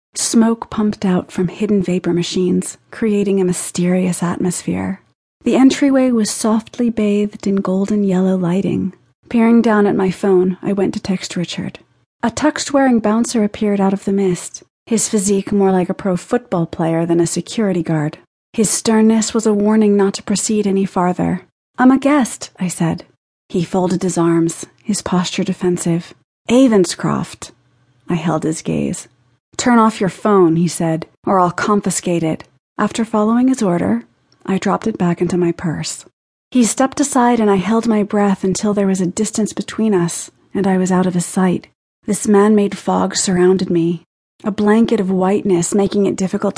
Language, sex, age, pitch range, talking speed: English, female, 30-49, 180-220 Hz, 170 wpm